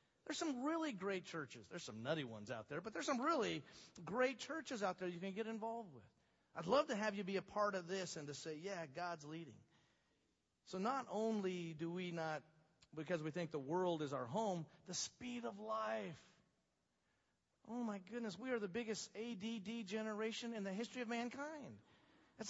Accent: American